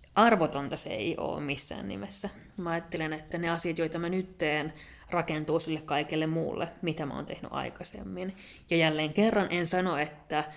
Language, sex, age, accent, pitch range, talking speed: Finnish, female, 20-39, native, 160-185 Hz, 170 wpm